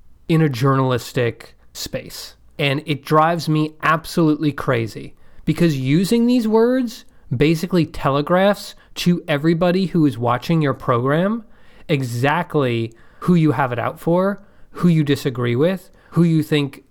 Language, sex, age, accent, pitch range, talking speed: English, male, 30-49, American, 135-180 Hz, 130 wpm